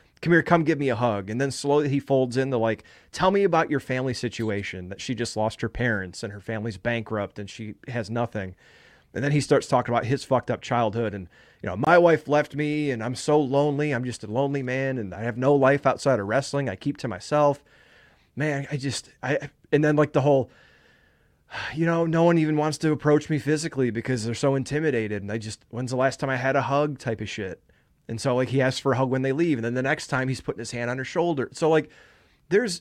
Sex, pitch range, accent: male, 115-145 Hz, American